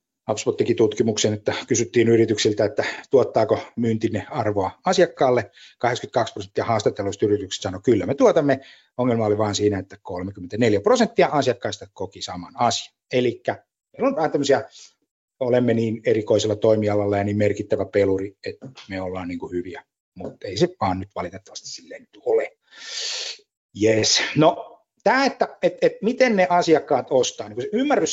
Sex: male